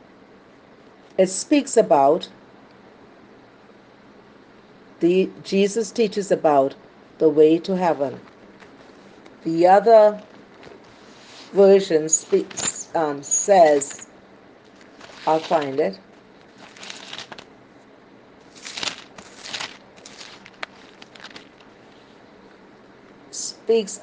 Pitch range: 170-255 Hz